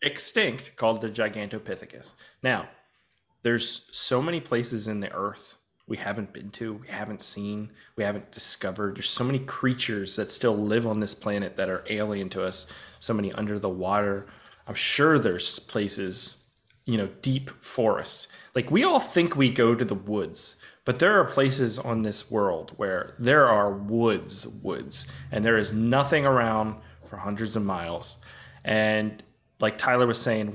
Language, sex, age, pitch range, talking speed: English, male, 20-39, 105-130 Hz, 165 wpm